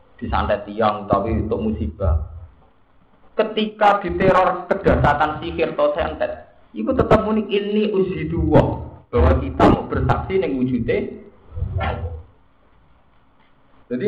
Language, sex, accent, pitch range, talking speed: Indonesian, male, native, 90-130 Hz, 100 wpm